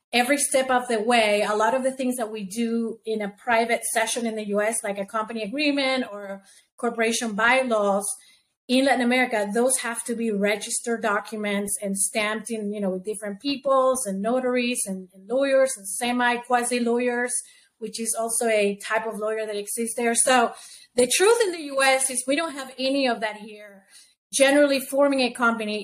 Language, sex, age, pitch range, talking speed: English, female, 30-49, 215-255 Hz, 185 wpm